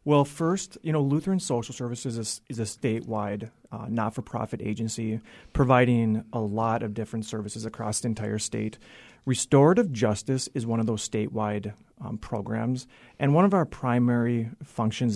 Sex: male